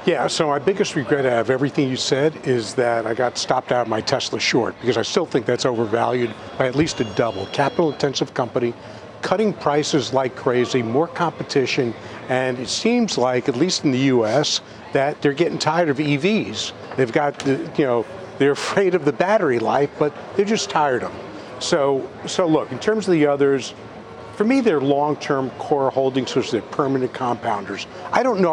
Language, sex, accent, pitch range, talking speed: English, male, American, 125-160 Hz, 195 wpm